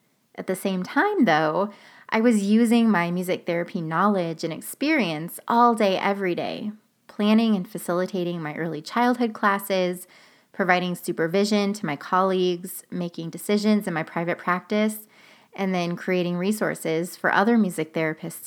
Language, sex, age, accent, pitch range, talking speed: English, female, 20-39, American, 170-210 Hz, 145 wpm